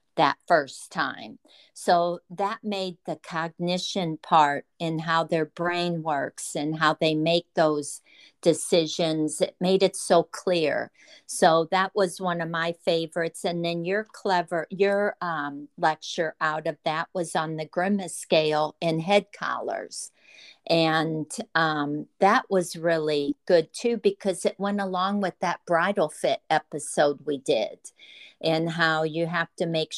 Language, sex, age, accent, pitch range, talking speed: English, female, 50-69, American, 155-185 Hz, 150 wpm